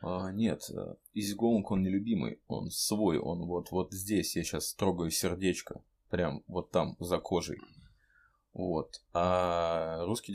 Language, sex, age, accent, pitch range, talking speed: Ukrainian, male, 20-39, native, 90-105 Hz, 135 wpm